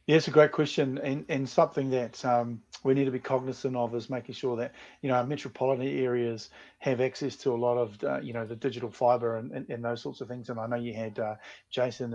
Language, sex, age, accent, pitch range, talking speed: English, male, 30-49, Australian, 120-140 Hz, 250 wpm